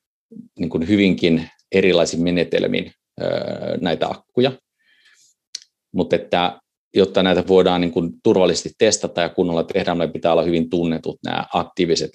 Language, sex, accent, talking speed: Finnish, male, native, 120 wpm